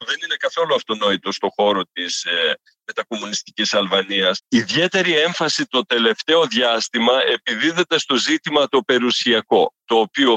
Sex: male